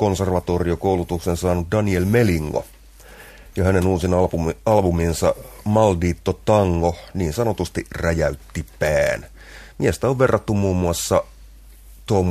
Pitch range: 75-95 Hz